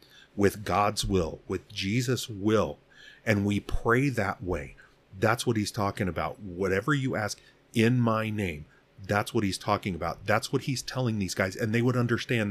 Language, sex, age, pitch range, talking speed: English, male, 40-59, 95-125 Hz, 175 wpm